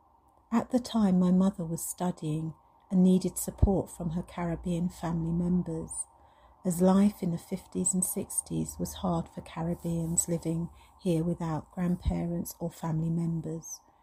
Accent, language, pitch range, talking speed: British, English, 160-185 Hz, 140 wpm